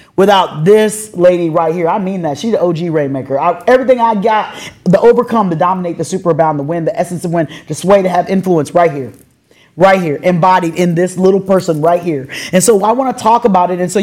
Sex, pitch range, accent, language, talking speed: male, 150-190 Hz, American, English, 230 wpm